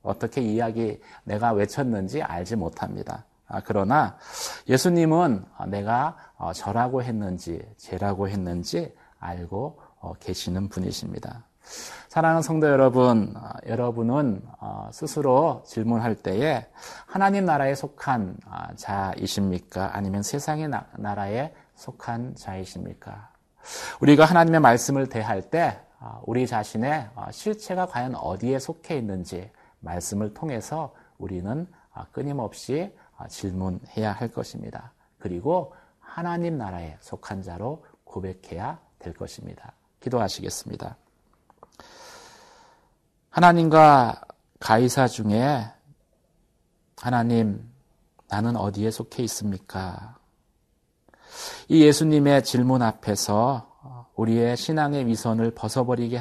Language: Korean